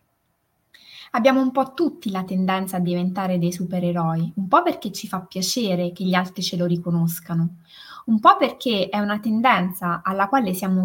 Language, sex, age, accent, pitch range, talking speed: Italian, female, 20-39, native, 180-235 Hz, 170 wpm